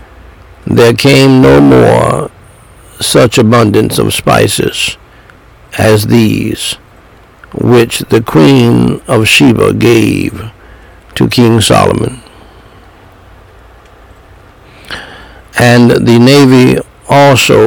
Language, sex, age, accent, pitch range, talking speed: English, male, 60-79, American, 100-125 Hz, 80 wpm